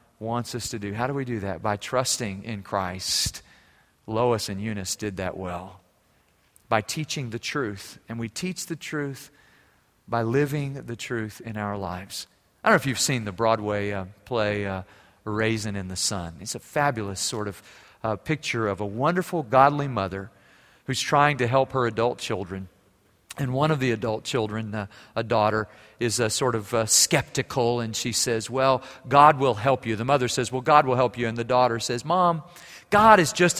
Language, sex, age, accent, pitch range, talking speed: English, male, 40-59, American, 100-135 Hz, 190 wpm